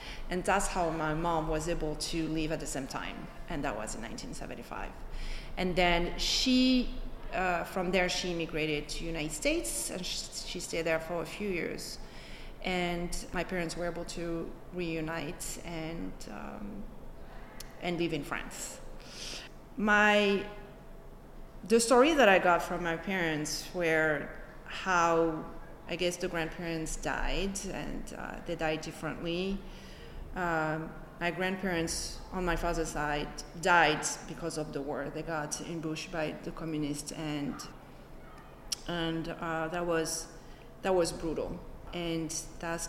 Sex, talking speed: female, 135 wpm